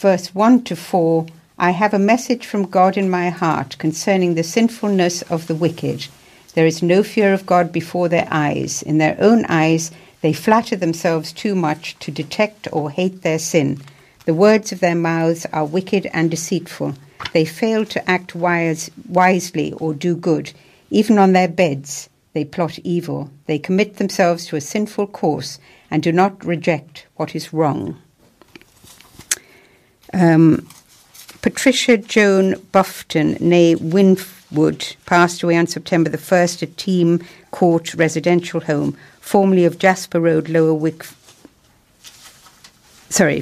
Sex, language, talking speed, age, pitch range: female, English, 145 wpm, 60-79, 160-190 Hz